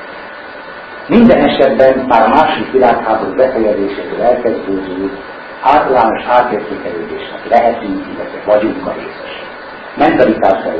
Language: Hungarian